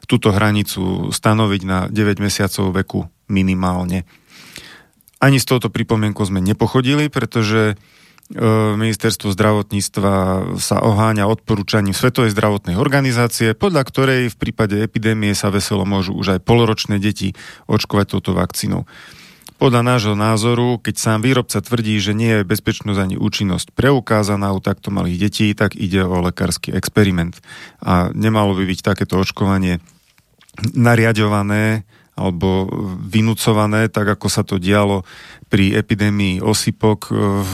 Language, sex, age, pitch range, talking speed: Slovak, male, 30-49, 100-115 Hz, 125 wpm